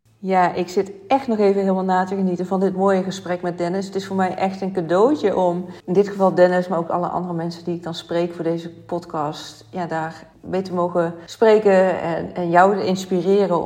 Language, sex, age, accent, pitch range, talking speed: Dutch, female, 40-59, Dutch, 160-185 Hz, 215 wpm